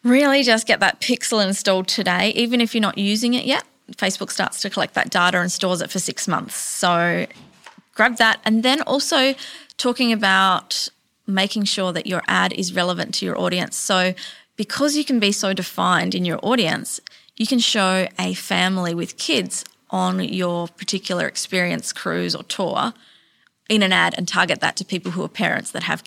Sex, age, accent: female, 20-39, Australian